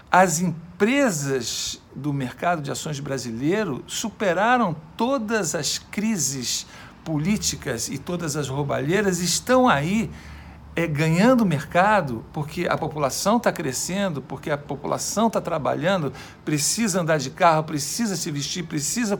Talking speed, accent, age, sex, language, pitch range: 120 wpm, Brazilian, 60-79, male, Portuguese, 140-195 Hz